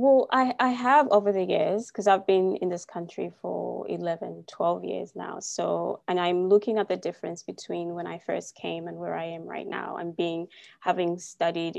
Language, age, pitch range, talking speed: English, 20-39, 170-195 Hz, 205 wpm